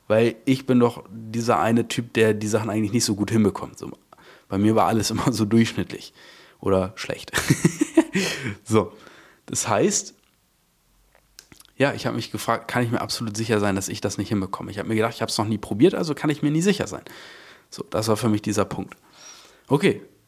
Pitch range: 105-120 Hz